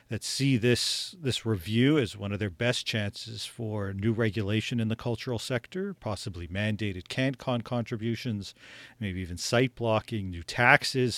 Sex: male